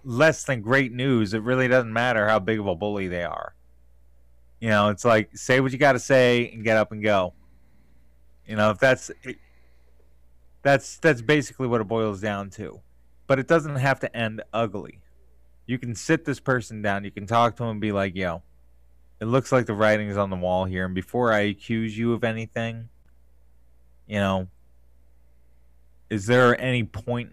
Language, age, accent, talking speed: English, 20-39, American, 190 wpm